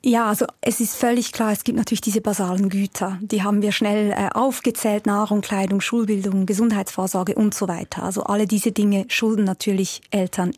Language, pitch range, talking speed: German, 200-230 Hz, 175 wpm